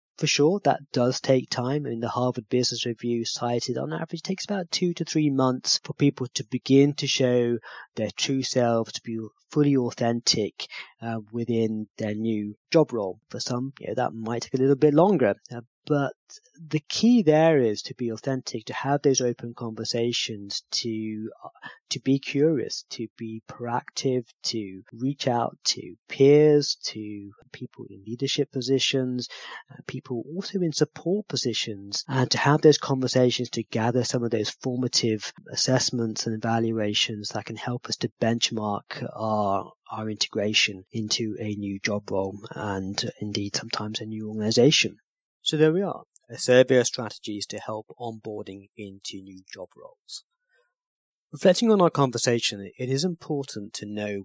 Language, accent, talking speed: English, British, 165 wpm